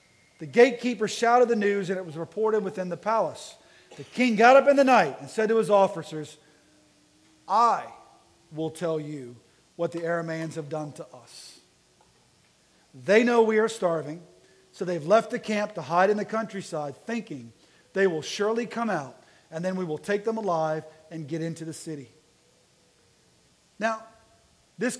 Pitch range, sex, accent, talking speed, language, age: 160-230 Hz, male, American, 170 wpm, English, 40-59